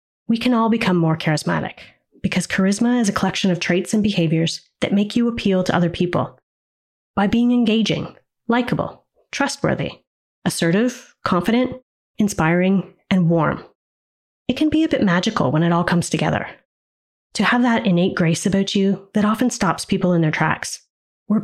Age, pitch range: 30-49, 170-215 Hz